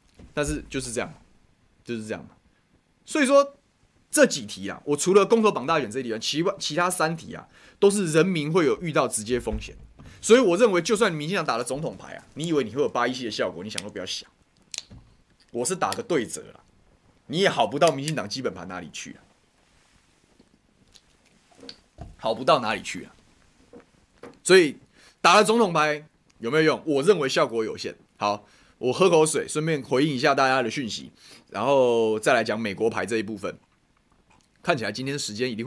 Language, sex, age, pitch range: Chinese, male, 20-39, 115-175 Hz